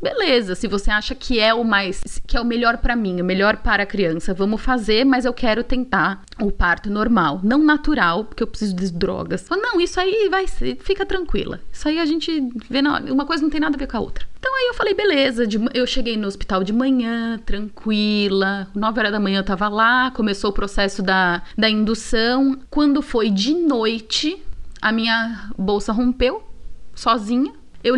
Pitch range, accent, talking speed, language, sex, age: 200-260 Hz, Brazilian, 195 wpm, Portuguese, female, 20-39